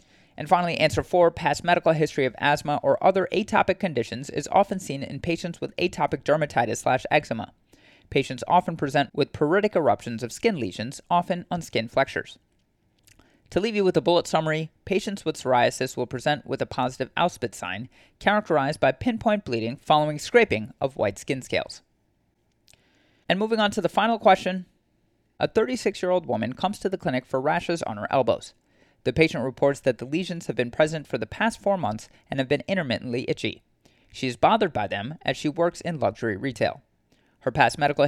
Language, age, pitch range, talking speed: English, 30-49, 125-180 Hz, 180 wpm